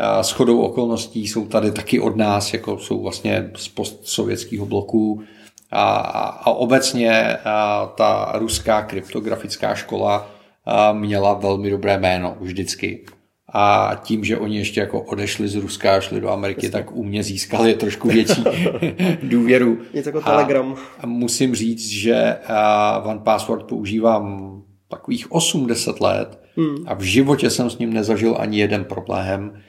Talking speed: 140 wpm